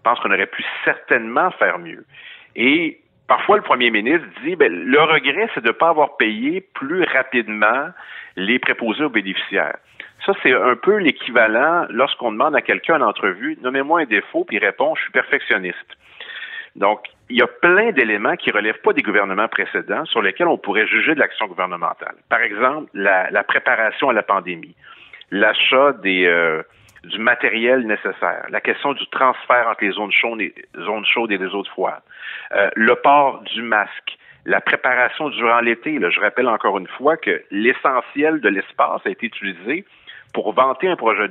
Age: 50-69